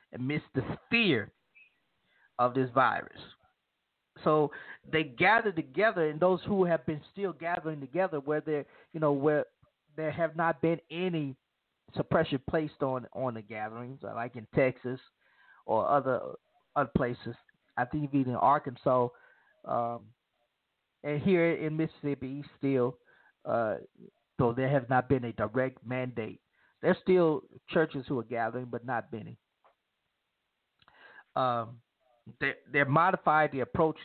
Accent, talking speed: American, 135 wpm